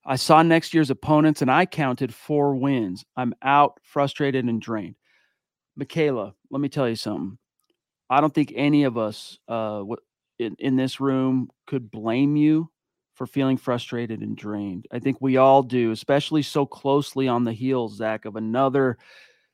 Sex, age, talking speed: male, 40-59, 165 wpm